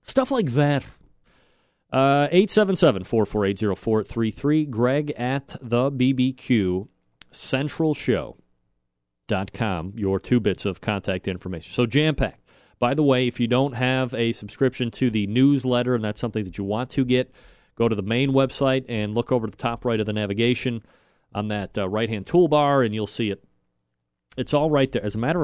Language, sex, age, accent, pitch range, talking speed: English, male, 40-59, American, 100-135 Hz, 165 wpm